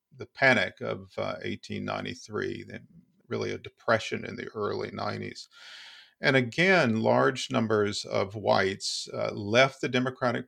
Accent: American